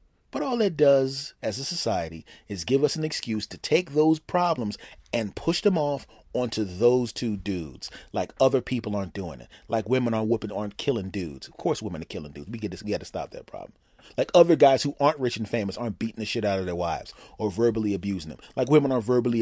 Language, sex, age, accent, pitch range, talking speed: English, male, 30-49, American, 85-115 Hz, 225 wpm